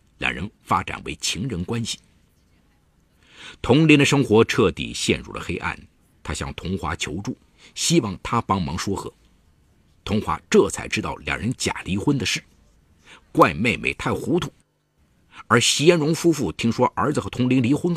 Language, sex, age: Chinese, male, 50-69